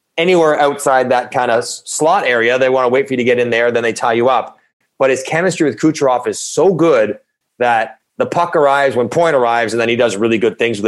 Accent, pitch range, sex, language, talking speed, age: American, 115-145 Hz, male, English, 250 wpm, 30-49